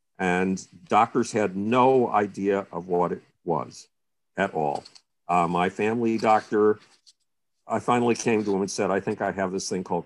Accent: American